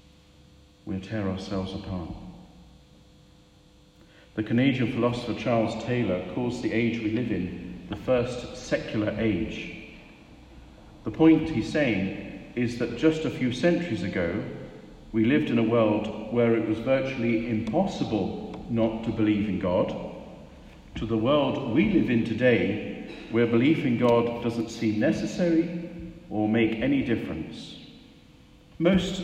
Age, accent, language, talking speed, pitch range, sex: 50-69, British, English, 135 wpm, 110-135 Hz, male